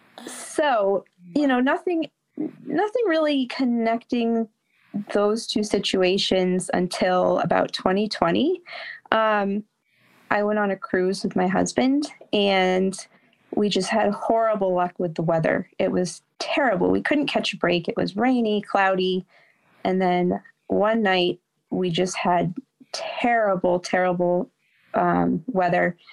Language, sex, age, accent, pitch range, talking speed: English, female, 30-49, American, 175-220 Hz, 125 wpm